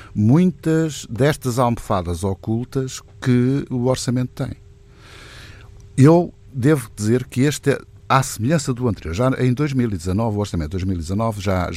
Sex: male